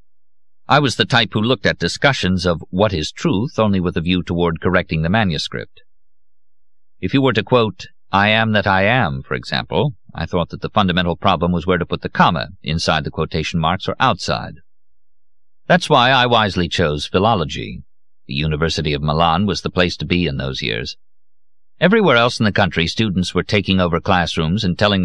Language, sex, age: English, male, 50-69